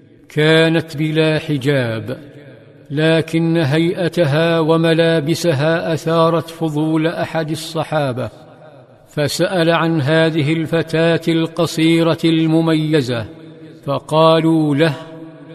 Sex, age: male, 50-69